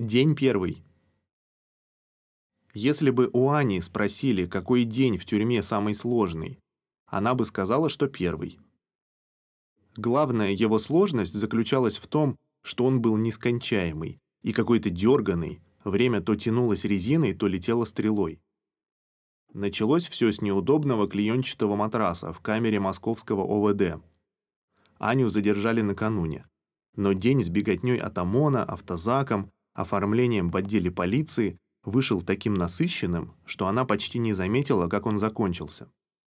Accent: native